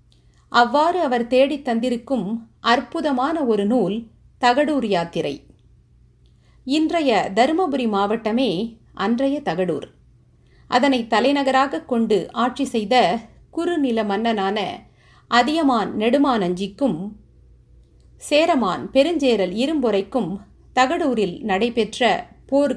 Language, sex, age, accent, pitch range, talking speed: Tamil, female, 50-69, native, 210-275 Hz, 75 wpm